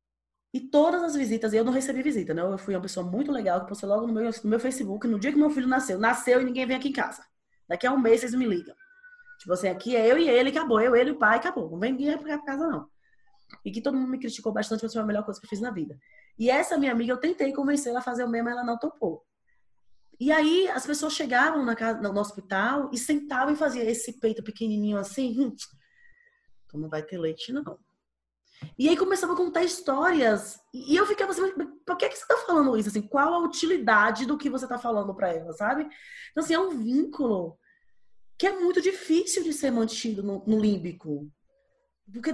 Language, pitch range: Portuguese, 220-320 Hz